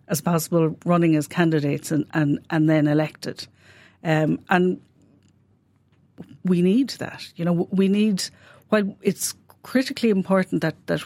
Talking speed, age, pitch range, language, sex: 135 wpm, 60-79, 155-190 Hz, English, female